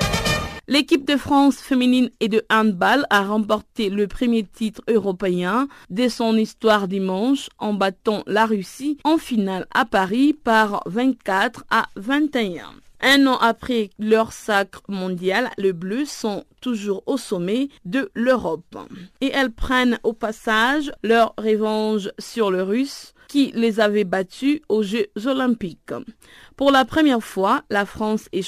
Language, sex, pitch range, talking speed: French, female, 200-255 Hz, 140 wpm